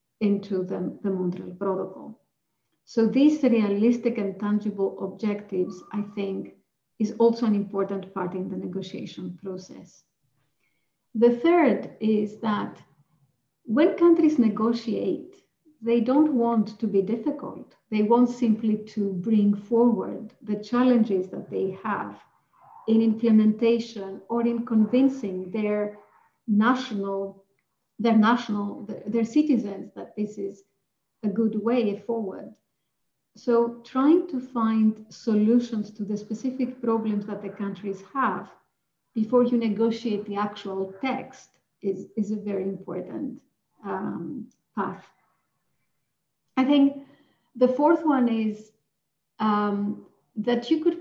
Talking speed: 120 wpm